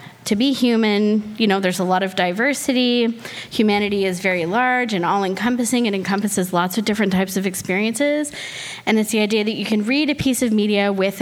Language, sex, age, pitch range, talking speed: English, female, 20-39, 185-230 Hz, 200 wpm